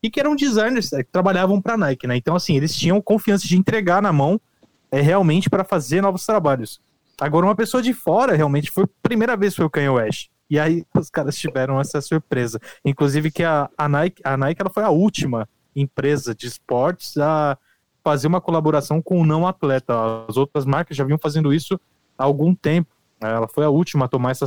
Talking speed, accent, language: 205 wpm, Brazilian, Portuguese